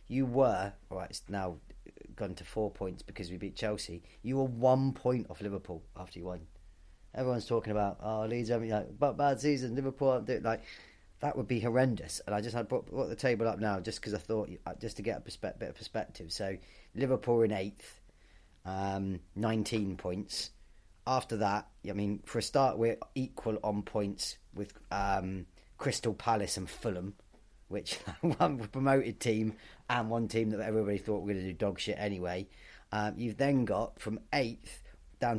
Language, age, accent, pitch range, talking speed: English, 30-49, British, 95-110 Hz, 190 wpm